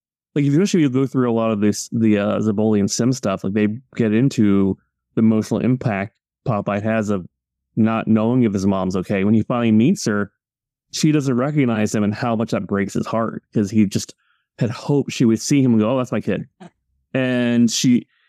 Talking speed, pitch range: 215 wpm, 105-120 Hz